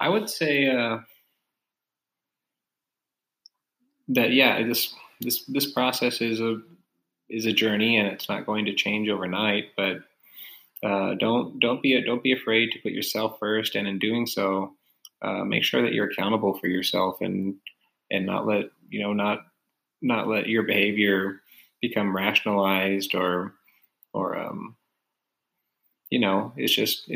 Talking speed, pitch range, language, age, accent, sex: 150 wpm, 95-110 Hz, English, 20-39, American, male